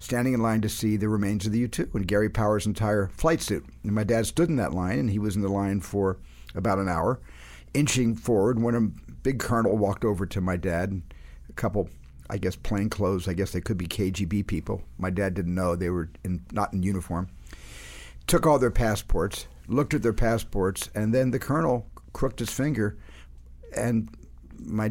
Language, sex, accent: English, male, American